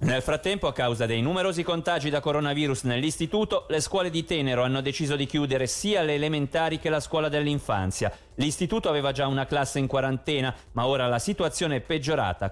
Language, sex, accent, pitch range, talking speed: Italian, male, native, 125-175 Hz, 180 wpm